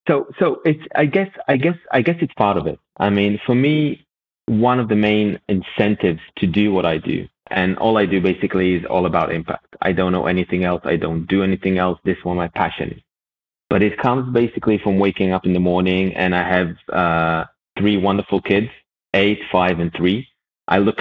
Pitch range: 90-105 Hz